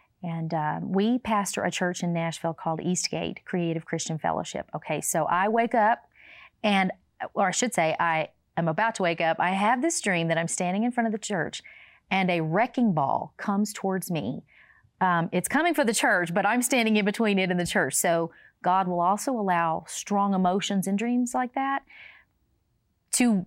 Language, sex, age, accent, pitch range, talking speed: English, female, 40-59, American, 175-230 Hz, 190 wpm